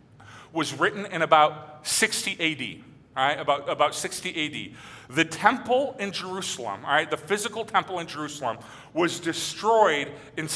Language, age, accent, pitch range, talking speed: English, 40-59, American, 150-215 Hz, 150 wpm